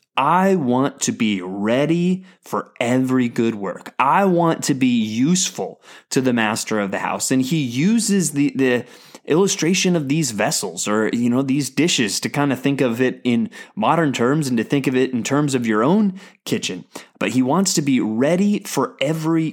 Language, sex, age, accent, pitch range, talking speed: English, male, 20-39, American, 120-170 Hz, 190 wpm